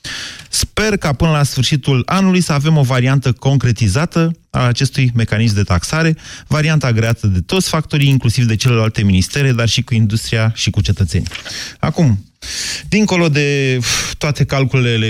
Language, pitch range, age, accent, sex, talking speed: Romanian, 100-135 Hz, 30-49, native, male, 145 wpm